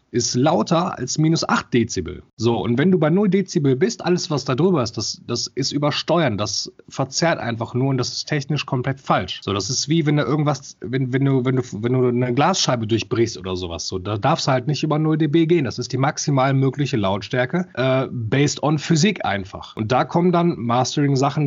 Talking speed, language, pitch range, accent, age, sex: 220 wpm, German, 115-150 Hz, German, 30-49, male